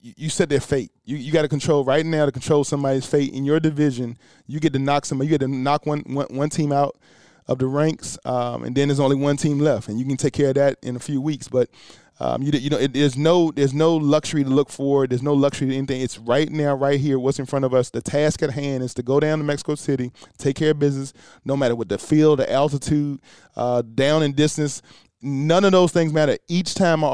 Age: 20-39